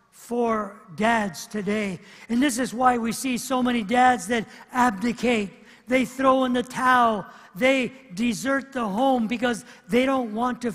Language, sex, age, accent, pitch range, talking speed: English, male, 50-69, American, 230-280 Hz, 155 wpm